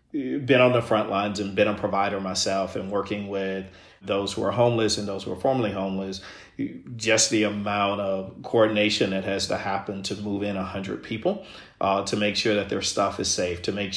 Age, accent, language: 40-59, American, English